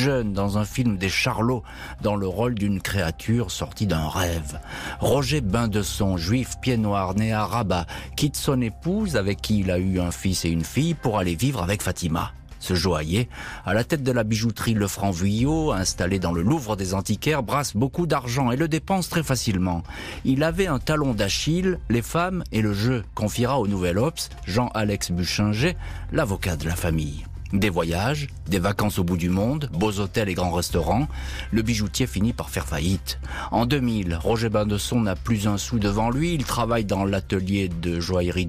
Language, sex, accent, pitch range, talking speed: French, male, French, 90-125 Hz, 185 wpm